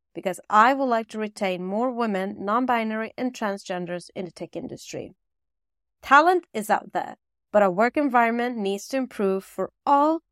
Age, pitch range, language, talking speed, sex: 30-49, 190-250 Hz, English, 165 wpm, female